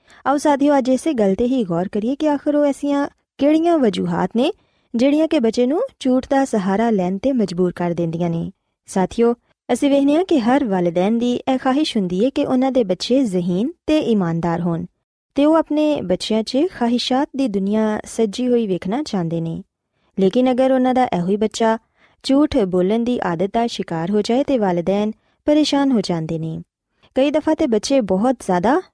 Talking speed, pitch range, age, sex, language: 180 wpm, 195-275 Hz, 20-39, female, Punjabi